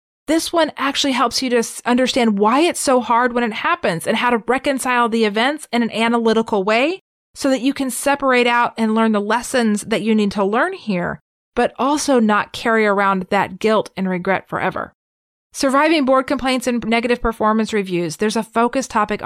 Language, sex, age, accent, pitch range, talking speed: English, female, 30-49, American, 205-260 Hz, 190 wpm